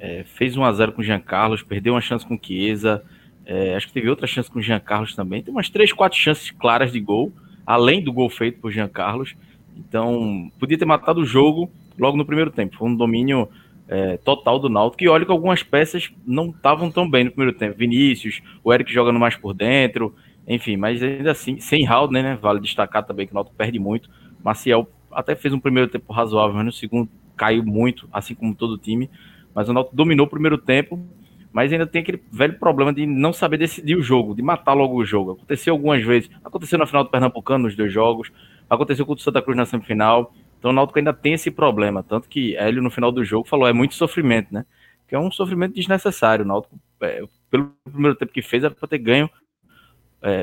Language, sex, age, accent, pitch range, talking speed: Portuguese, male, 20-39, Brazilian, 115-155 Hz, 220 wpm